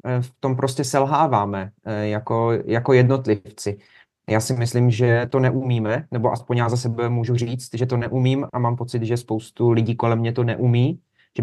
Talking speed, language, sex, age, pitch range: 180 wpm, Czech, male, 30-49, 120-140 Hz